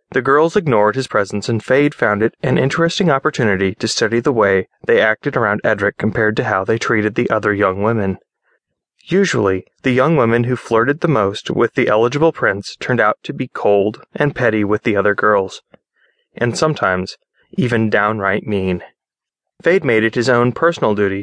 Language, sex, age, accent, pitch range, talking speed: English, male, 20-39, American, 105-145 Hz, 180 wpm